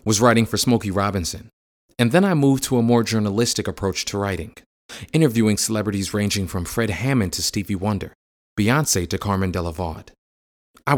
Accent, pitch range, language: American, 95-120 Hz, English